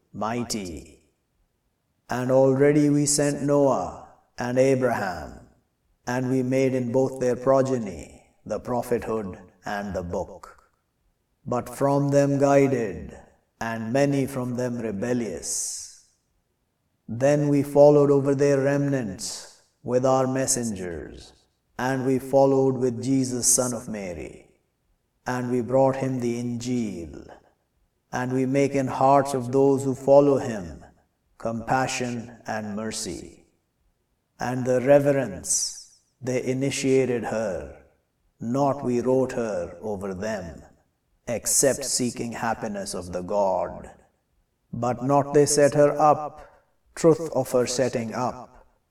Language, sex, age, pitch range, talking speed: English, male, 50-69, 120-135 Hz, 115 wpm